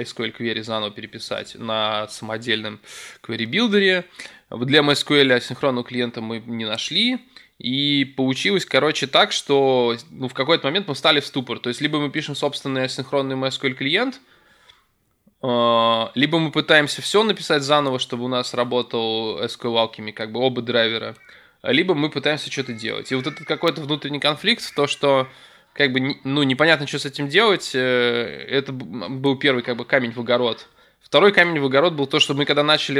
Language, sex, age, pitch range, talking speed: Russian, male, 20-39, 120-145 Hz, 165 wpm